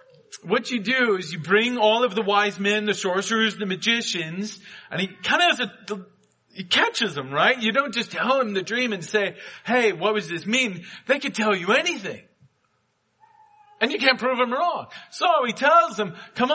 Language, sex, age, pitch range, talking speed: English, male, 40-59, 180-255 Hz, 200 wpm